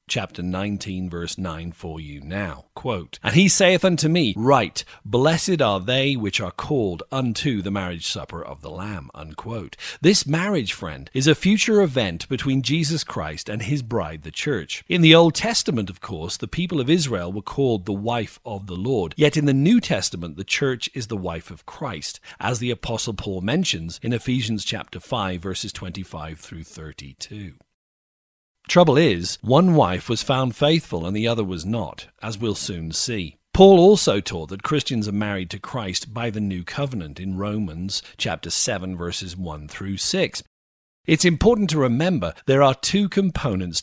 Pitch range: 90-145 Hz